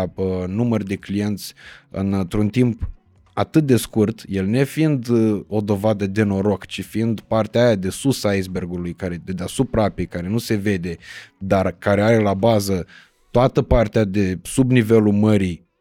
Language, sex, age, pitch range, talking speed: Romanian, male, 20-39, 95-120 Hz, 155 wpm